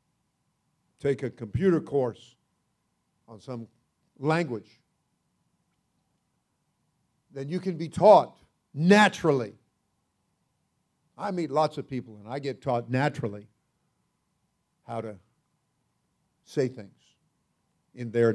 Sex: male